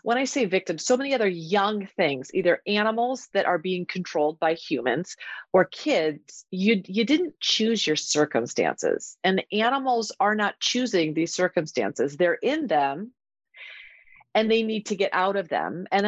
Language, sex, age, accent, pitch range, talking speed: English, female, 30-49, American, 170-215 Hz, 165 wpm